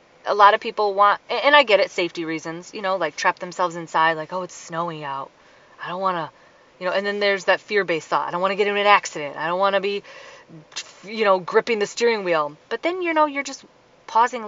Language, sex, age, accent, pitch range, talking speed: English, female, 20-39, American, 160-200 Hz, 250 wpm